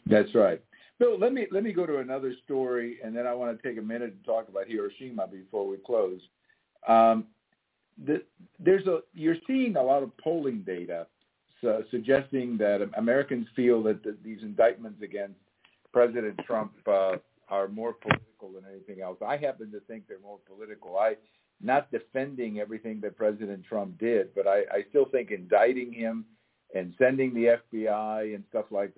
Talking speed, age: 175 wpm, 50-69